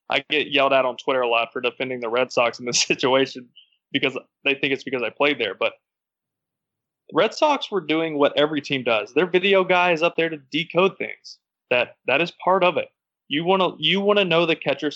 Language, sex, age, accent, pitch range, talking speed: English, male, 20-39, American, 140-180 Hz, 230 wpm